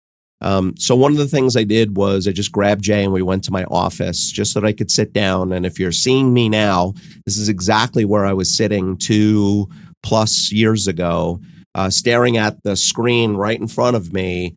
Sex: male